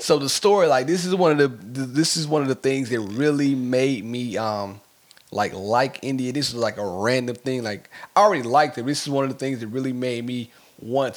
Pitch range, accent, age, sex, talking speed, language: 115-140 Hz, American, 30-49, male, 240 wpm, English